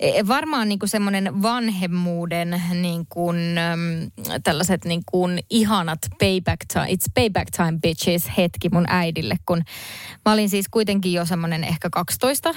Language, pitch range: Finnish, 170-200 Hz